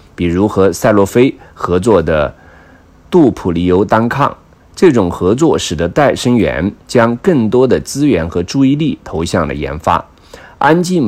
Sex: male